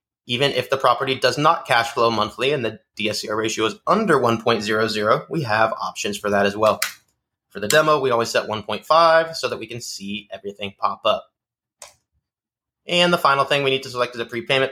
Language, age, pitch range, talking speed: English, 20-39, 105-135 Hz, 200 wpm